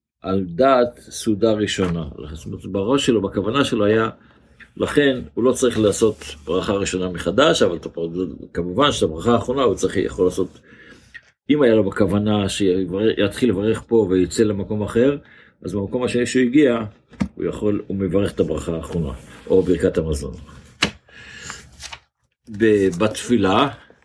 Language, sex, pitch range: Hebrew, male, 95-115 Hz